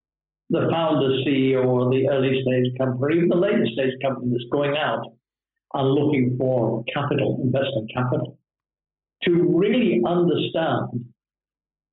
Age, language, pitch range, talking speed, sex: 60-79, English, 125-150 Hz, 120 wpm, male